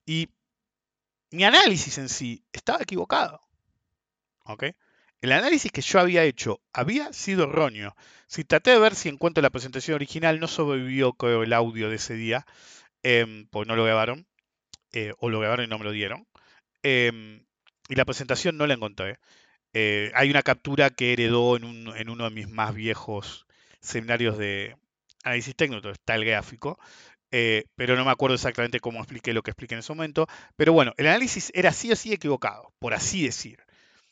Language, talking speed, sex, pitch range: Spanish, 180 wpm, male, 115-165 Hz